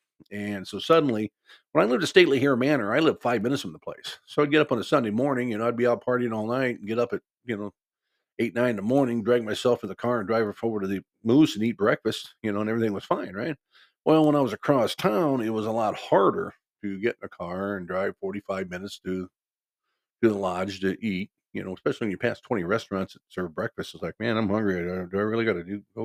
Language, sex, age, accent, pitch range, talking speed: English, male, 50-69, American, 100-125 Hz, 265 wpm